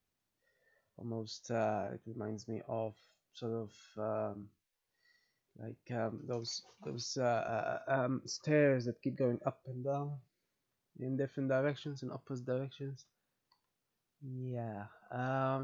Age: 20-39